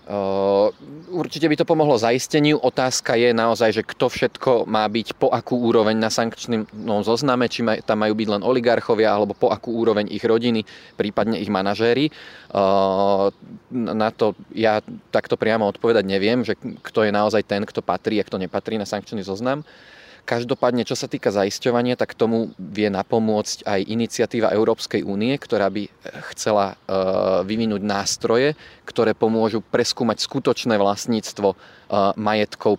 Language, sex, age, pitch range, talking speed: Slovak, male, 30-49, 100-115 Hz, 145 wpm